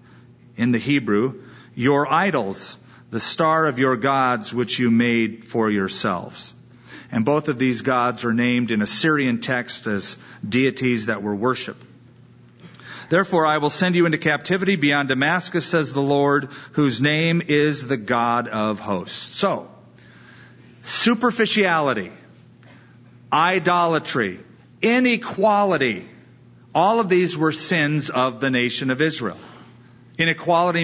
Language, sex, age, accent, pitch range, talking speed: English, male, 40-59, American, 120-160 Hz, 125 wpm